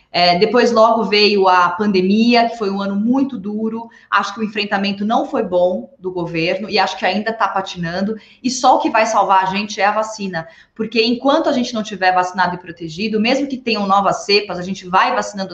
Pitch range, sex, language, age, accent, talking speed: 195-270 Hz, female, Portuguese, 20-39, Brazilian, 210 wpm